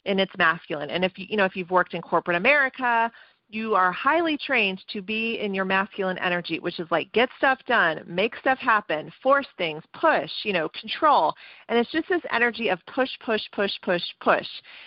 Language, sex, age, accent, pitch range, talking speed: English, female, 40-59, American, 180-235 Hz, 200 wpm